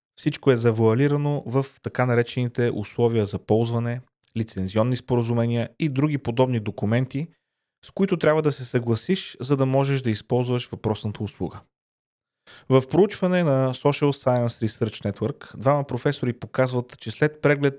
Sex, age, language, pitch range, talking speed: male, 30-49, Bulgarian, 115-140 Hz, 140 wpm